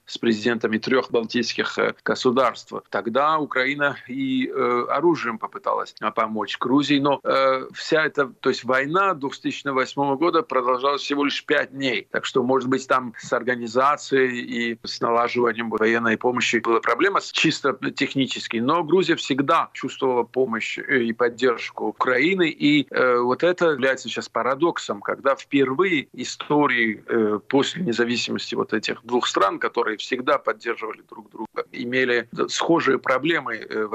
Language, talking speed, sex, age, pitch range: Russian, 135 wpm, male, 40-59, 115-145 Hz